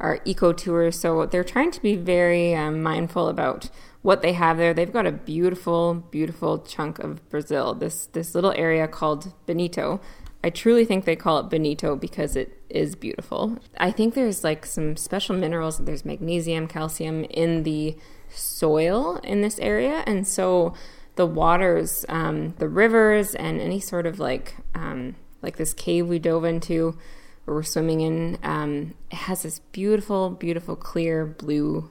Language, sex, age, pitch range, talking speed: English, female, 20-39, 160-185 Hz, 160 wpm